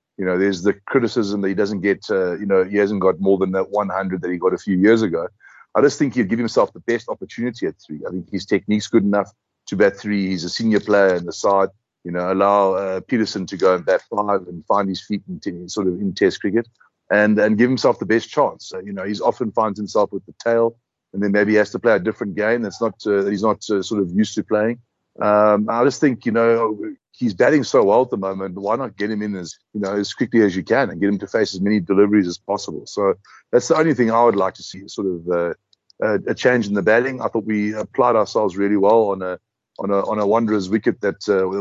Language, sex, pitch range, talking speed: English, male, 95-110 Hz, 265 wpm